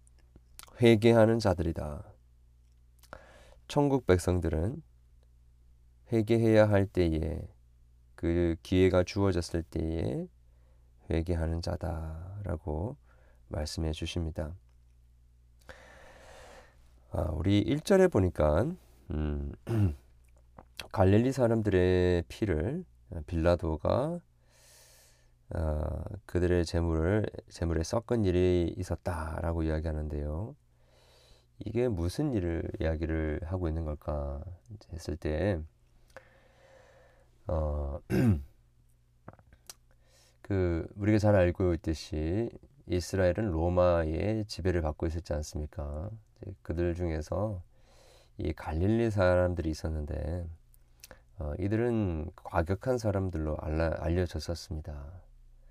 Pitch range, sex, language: 75-95 Hz, male, Korean